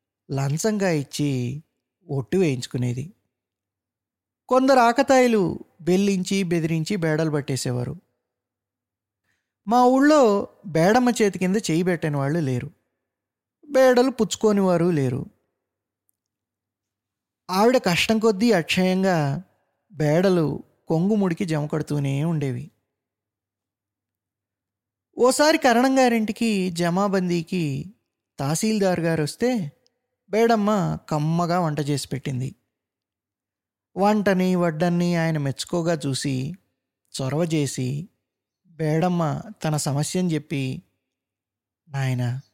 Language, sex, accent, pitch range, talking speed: Telugu, male, native, 130-180 Hz, 75 wpm